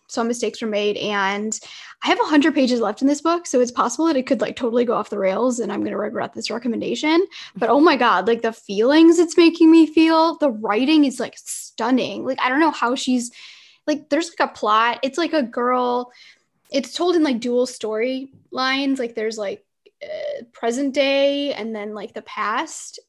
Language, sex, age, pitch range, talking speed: English, female, 10-29, 220-270 Hz, 215 wpm